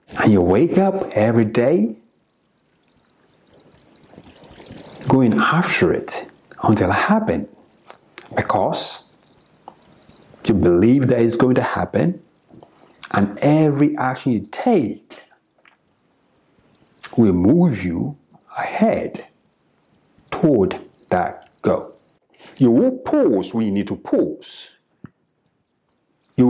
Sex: male